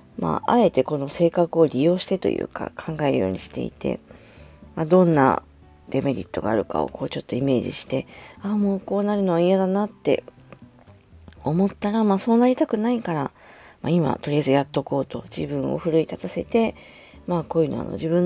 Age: 40-59